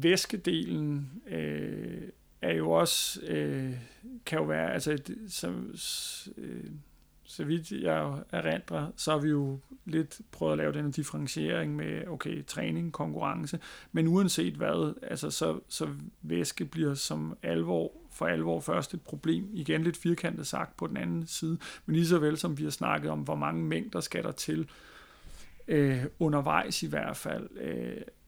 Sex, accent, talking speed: male, native, 145 wpm